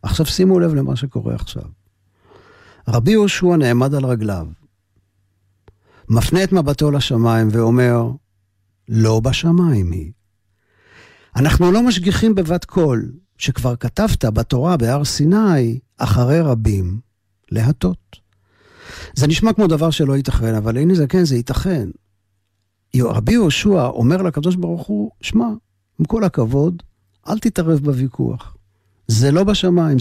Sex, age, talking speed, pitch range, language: male, 60-79, 120 wpm, 100-150 Hz, Hebrew